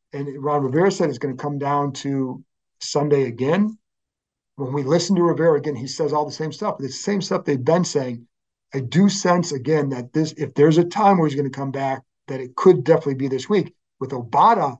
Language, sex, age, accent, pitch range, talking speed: English, male, 50-69, American, 135-170 Hz, 230 wpm